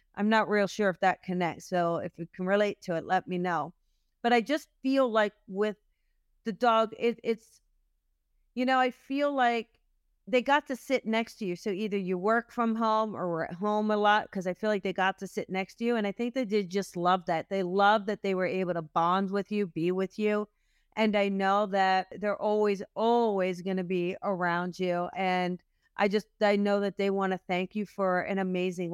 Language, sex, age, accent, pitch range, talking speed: English, female, 40-59, American, 185-225 Hz, 225 wpm